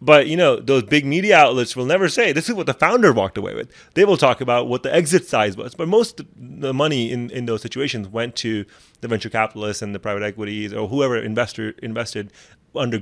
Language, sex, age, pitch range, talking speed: English, male, 30-49, 105-135 Hz, 230 wpm